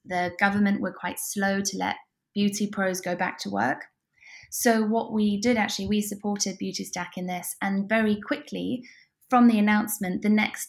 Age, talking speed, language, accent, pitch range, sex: 20-39, 180 wpm, English, British, 185-220 Hz, female